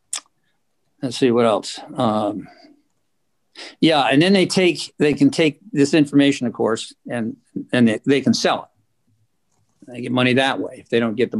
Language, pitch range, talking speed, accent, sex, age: English, 115-145 Hz, 180 wpm, American, male, 50-69